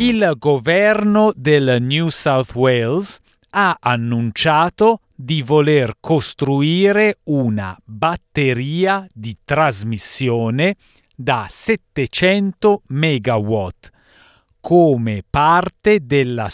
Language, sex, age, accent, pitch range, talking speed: Italian, male, 40-59, native, 115-165 Hz, 75 wpm